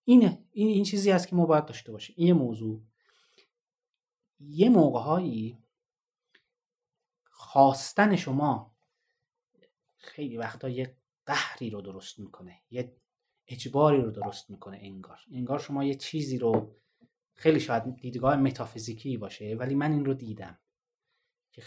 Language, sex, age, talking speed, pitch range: Persian, male, 30-49, 120 wpm, 120-190 Hz